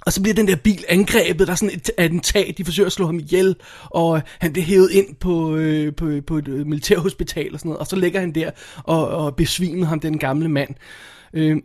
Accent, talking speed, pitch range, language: native, 230 wpm, 165-210 Hz, Danish